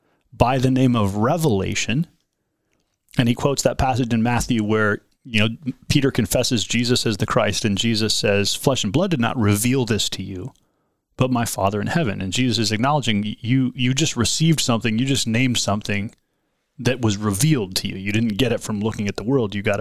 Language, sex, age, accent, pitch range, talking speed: English, male, 30-49, American, 105-130 Hz, 205 wpm